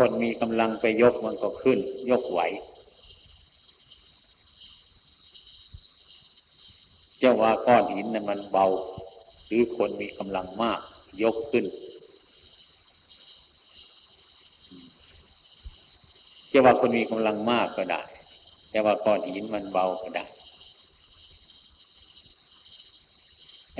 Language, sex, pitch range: Thai, male, 80-110 Hz